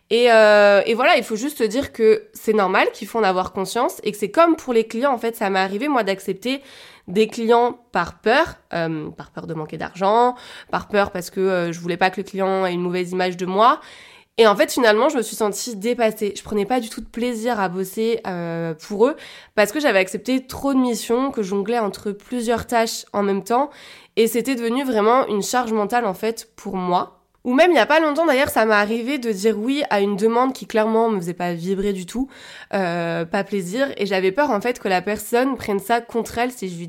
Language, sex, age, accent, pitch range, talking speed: French, female, 20-39, French, 190-245 Hz, 240 wpm